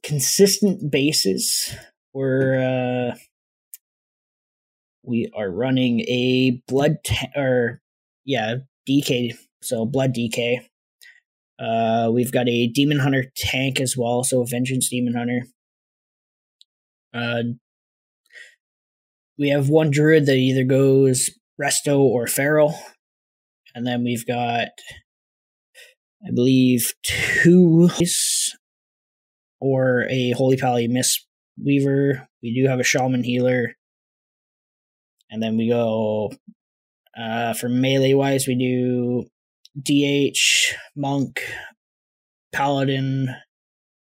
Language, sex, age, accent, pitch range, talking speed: English, male, 20-39, American, 120-140 Hz, 100 wpm